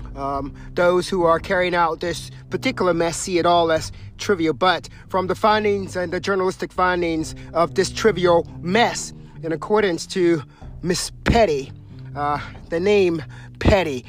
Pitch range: 160-205 Hz